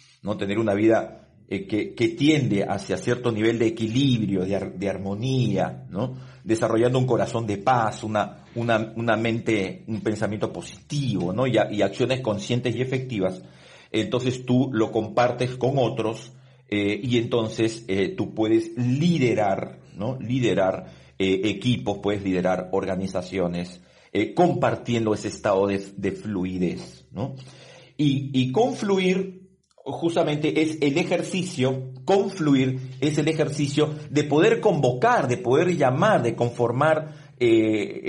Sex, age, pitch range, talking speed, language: male, 50-69, 110-150 Hz, 135 wpm, Spanish